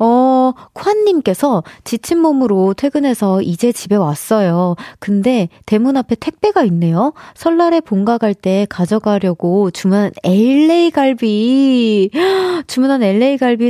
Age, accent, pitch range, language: 20-39, native, 195-305 Hz, Korean